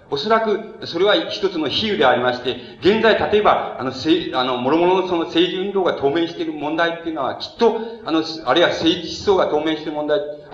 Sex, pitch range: male, 150-200 Hz